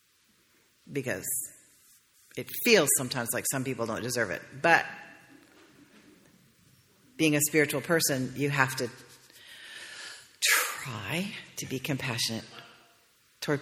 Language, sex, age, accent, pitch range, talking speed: English, female, 40-59, American, 125-160 Hz, 100 wpm